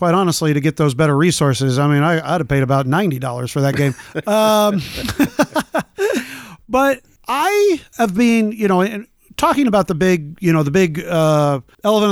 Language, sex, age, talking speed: English, male, 40-59, 180 wpm